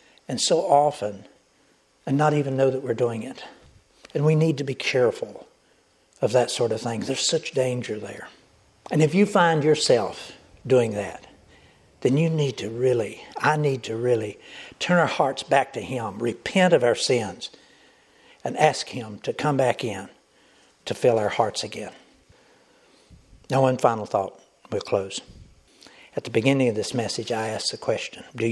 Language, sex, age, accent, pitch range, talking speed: English, male, 60-79, American, 110-140 Hz, 170 wpm